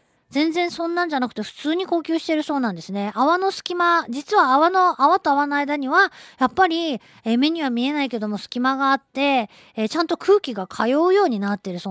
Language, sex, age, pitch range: Japanese, female, 20-39, 205-310 Hz